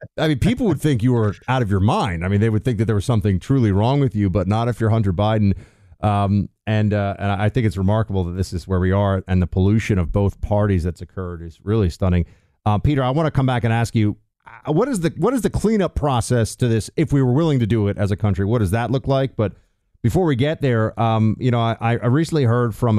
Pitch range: 100-135 Hz